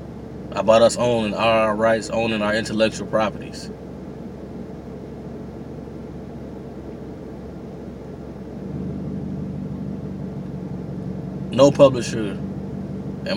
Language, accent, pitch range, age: English, American, 105-150 Hz, 20-39